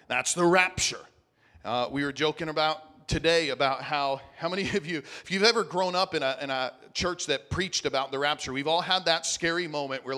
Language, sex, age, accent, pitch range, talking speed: English, male, 40-59, American, 135-170 Hz, 220 wpm